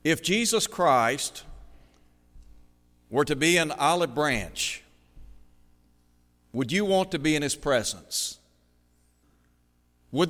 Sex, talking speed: male, 105 wpm